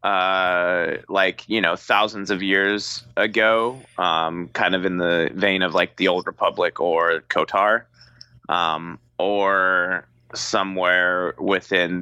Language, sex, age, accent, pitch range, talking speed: English, male, 20-39, American, 85-110 Hz, 125 wpm